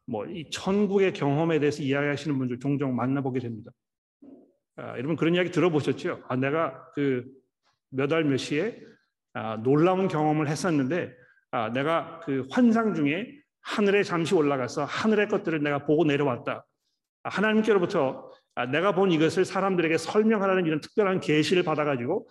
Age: 40-59